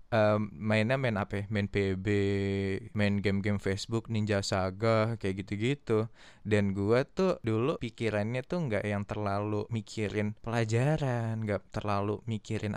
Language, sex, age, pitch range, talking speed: Indonesian, male, 20-39, 105-120 Hz, 125 wpm